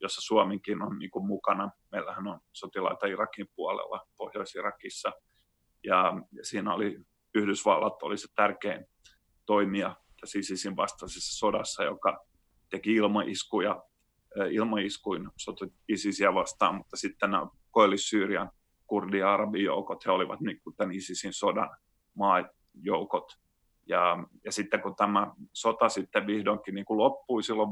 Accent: native